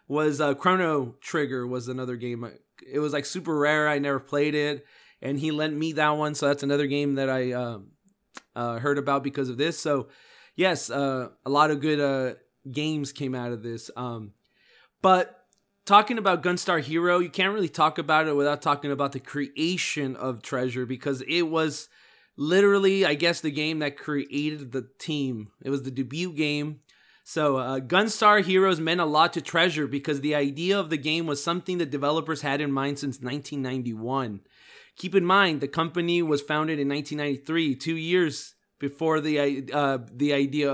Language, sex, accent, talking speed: English, male, American, 185 wpm